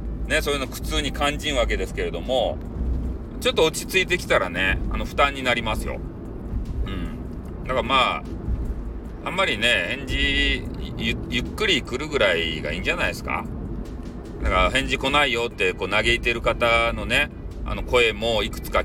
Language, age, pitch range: Japanese, 40-59, 80-120 Hz